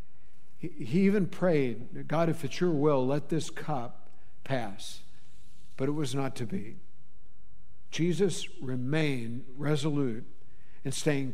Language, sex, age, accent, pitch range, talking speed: English, male, 60-79, American, 125-160 Hz, 120 wpm